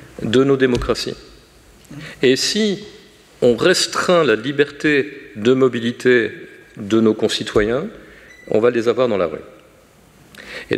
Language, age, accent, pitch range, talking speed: French, 50-69, French, 110-160 Hz, 120 wpm